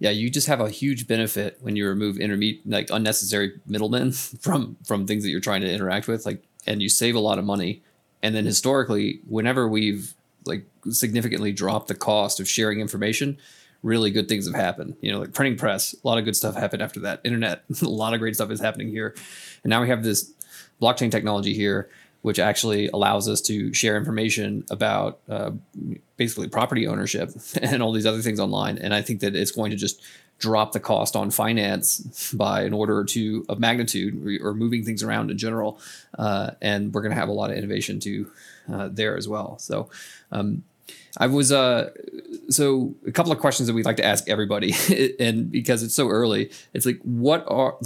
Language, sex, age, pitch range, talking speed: English, male, 20-39, 105-120 Hz, 205 wpm